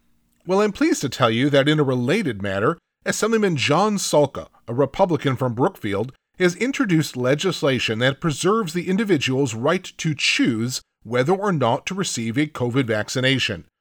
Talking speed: 155 wpm